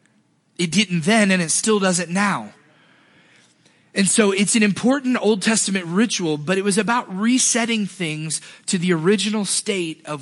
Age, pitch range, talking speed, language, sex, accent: 30-49, 165-205 Hz, 165 wpm, English, male, American